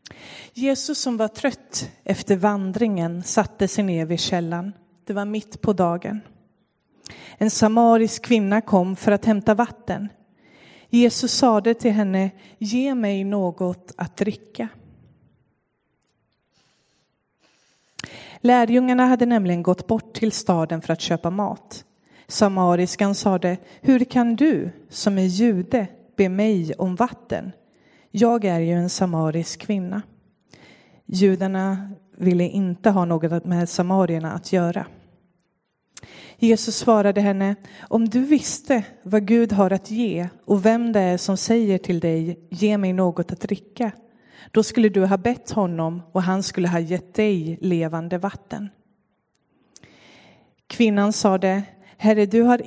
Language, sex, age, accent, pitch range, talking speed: Swedish, female, 30-49, native, 180-225 Hz, 130 wpm